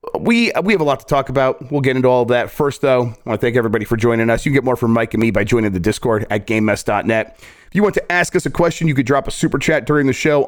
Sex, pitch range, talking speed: male, 115-145 Hz, 315 wpm